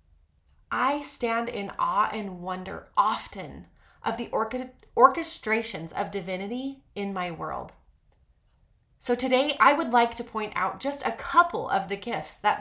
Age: 30-49